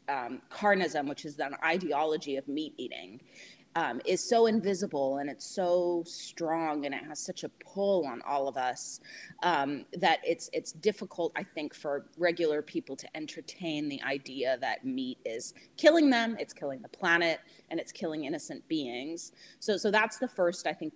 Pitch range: 155-225 Hz